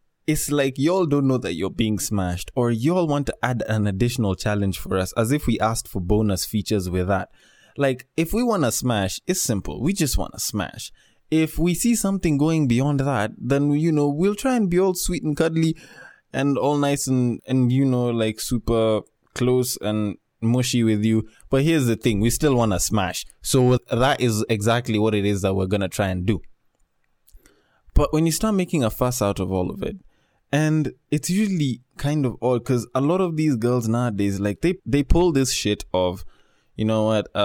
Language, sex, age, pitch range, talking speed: English, male, 20-39, 105-145 Hz, 210 wpm